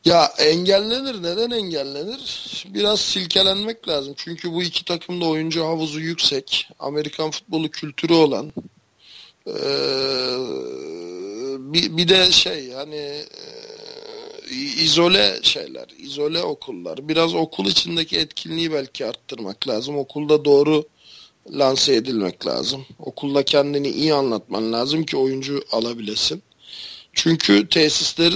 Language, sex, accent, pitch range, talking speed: Turkish, male, native, 145-175 Hz, 110 wpm